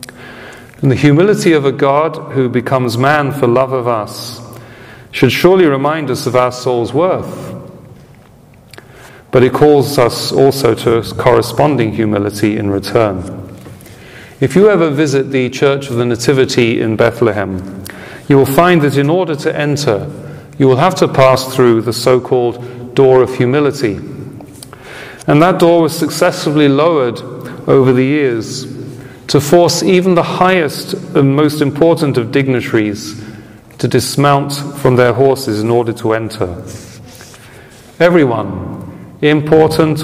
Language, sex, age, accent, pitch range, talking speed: English, male, 40-59, British, 115-140 Hz, 135 wpm